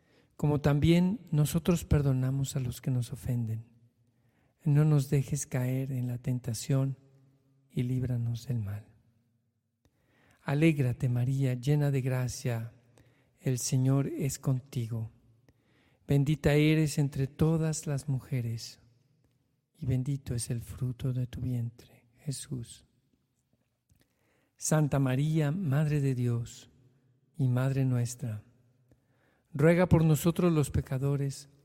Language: Spanish